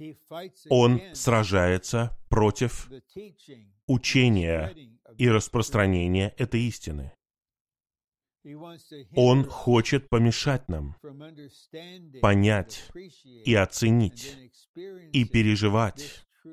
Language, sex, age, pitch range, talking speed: Russian, male, 30-49, 100-135 Hz, 60 wpm